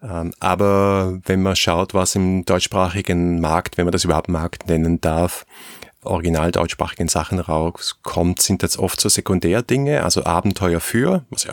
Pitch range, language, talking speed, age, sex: 95-110 Hz, German, 150 wpm, 30-49, male